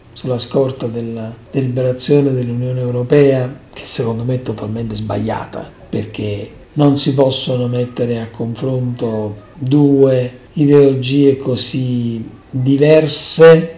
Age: 50-69